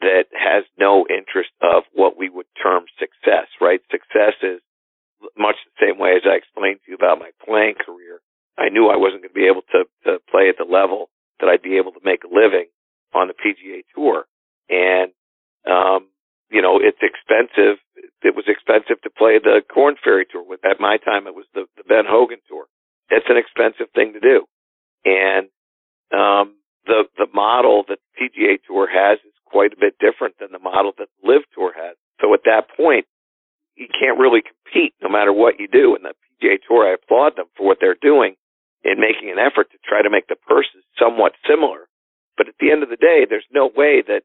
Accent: American